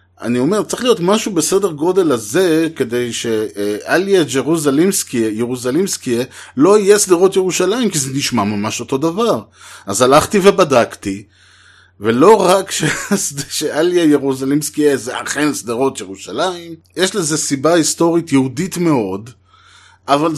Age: 30-49